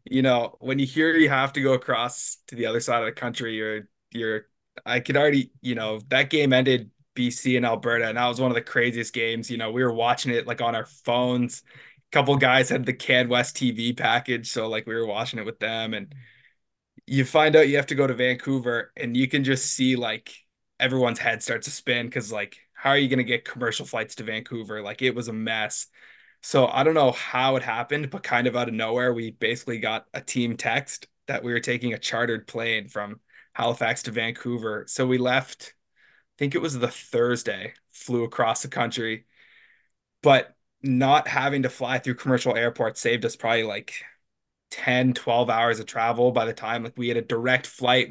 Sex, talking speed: male, 215 wpm